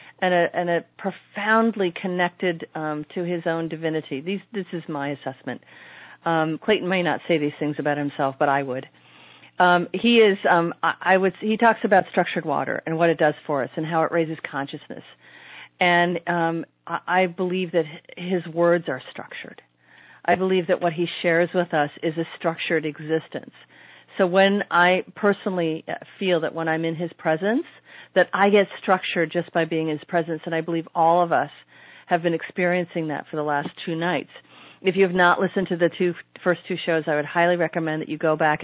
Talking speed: 200 wpm